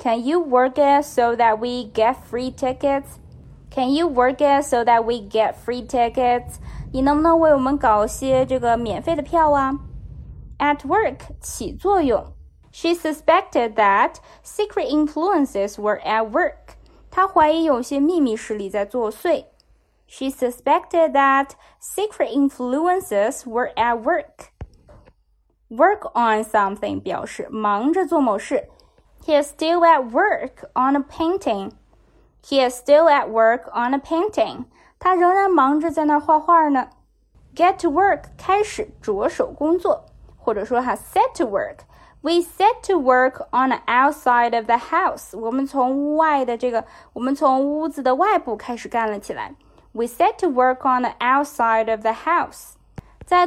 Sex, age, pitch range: female, 20-39, 240-330 Hz